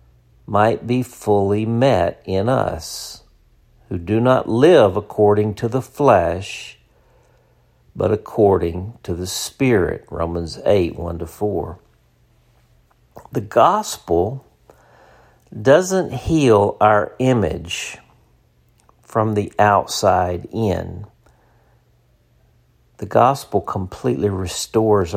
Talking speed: 85 wpm